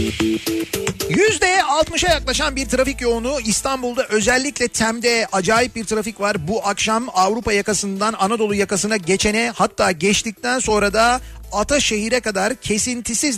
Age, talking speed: 40-59, 120 wpm